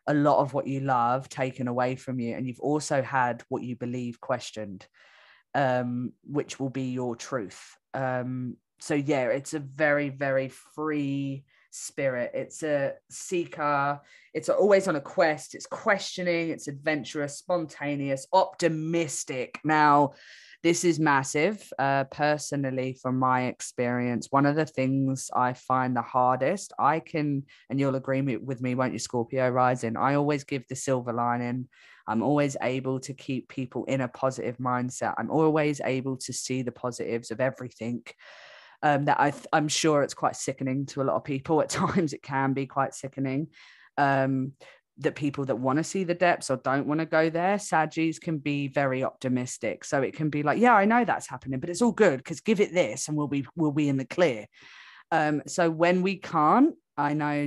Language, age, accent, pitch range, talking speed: English, 20-39, British, 130-155 Hz, 180 wpm